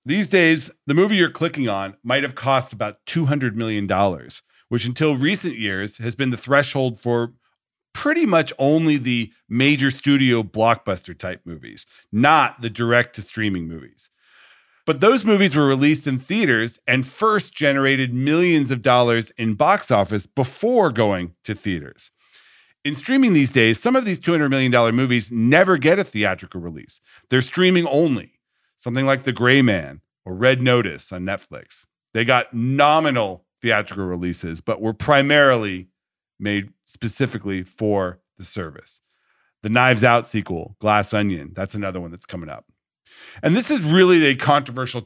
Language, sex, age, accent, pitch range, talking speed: English, male, 40-59, American, 105-150 Hz, 150 wpm